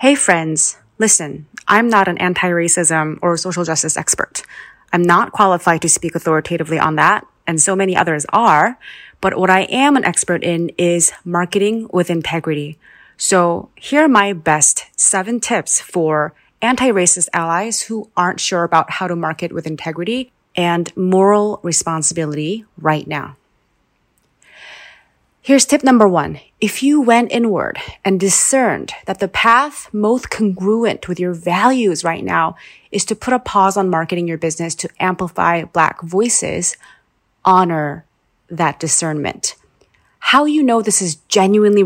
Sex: female